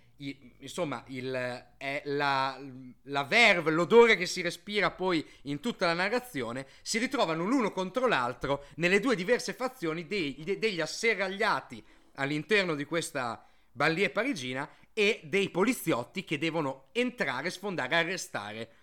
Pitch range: 140-210 Hz